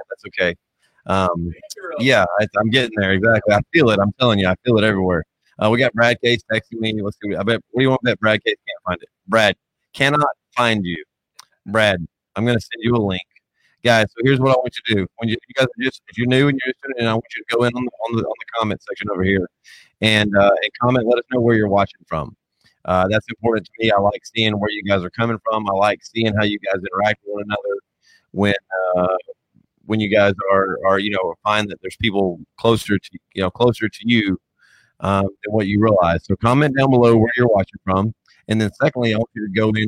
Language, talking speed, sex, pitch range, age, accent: English, 245 wpm, male, 100-120 Hz, 30-49, American